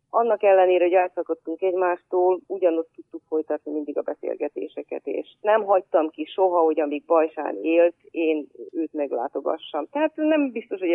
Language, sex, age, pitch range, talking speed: Hungarian, female, 40-59, 155-195 Hz, 150 wpm